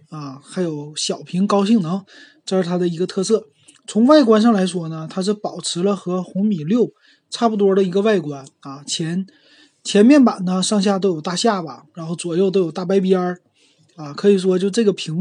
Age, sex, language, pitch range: 20-39, male, Chinese, 170-215 Hz